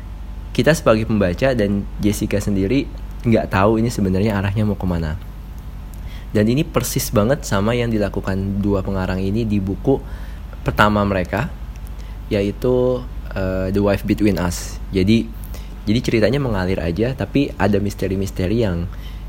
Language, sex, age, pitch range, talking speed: Indonesian, male, 20-39, 85-105 Hz, 130 wpm